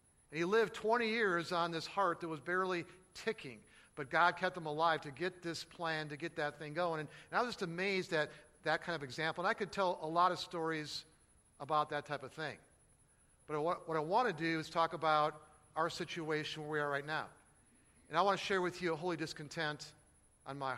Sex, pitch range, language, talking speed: male, 145-170 Hz, English, 220 wpm